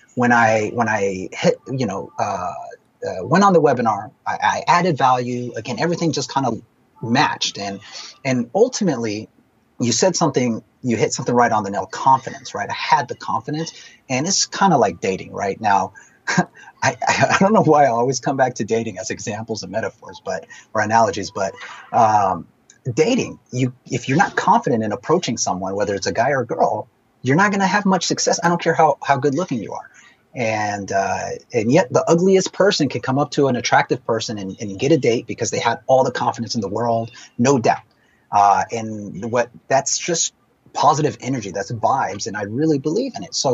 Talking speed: 205 wpm